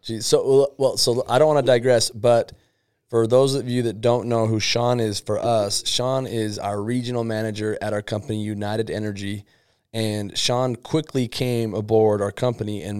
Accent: American